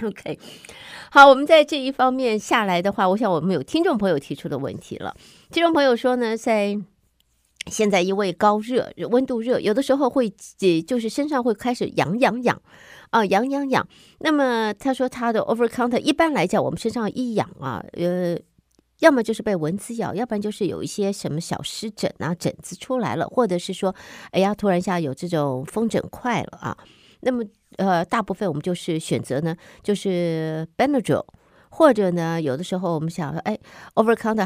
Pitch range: 175-240 Hz